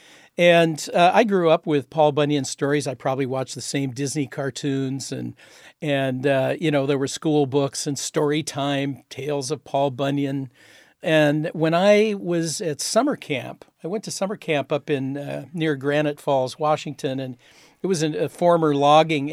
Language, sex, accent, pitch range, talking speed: English, male, American, 140-160 Hz, 180 wpm